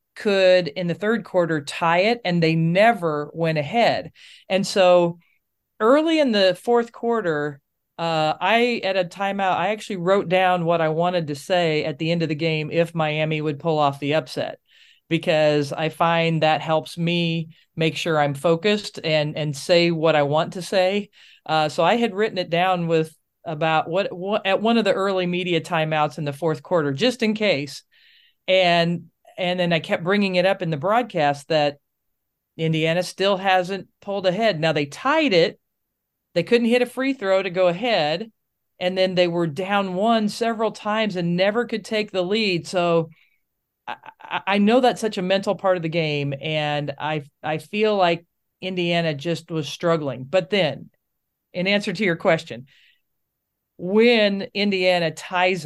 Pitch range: 160-200 Hz